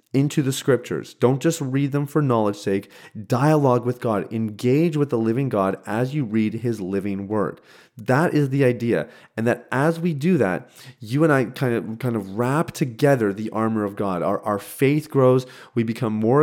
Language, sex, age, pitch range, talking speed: English, male, 30-49, 110-140 Hz, 195 wpm